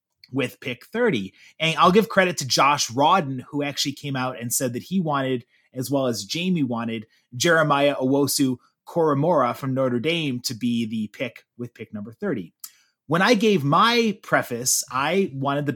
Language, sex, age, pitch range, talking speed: English, male, 30-49, 130-185 Hz, 175 wpm